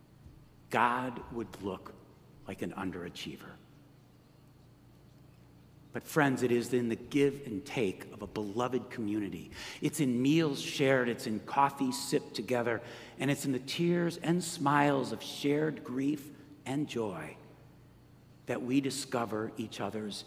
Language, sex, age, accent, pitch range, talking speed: English, male, 60-79, American, 115-160 Hz, 135 wpm